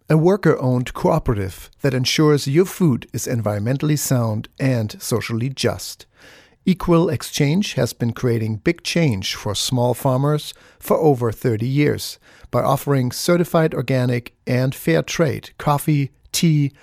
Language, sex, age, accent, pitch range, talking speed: English, male, 60-79, German, 115-155 Hz, 130 wpm